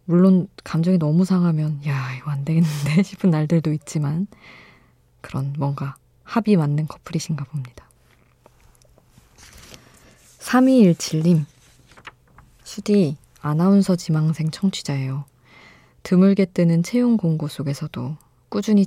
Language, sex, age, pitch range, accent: Korean, female, 20-39, 145-185 Hz, native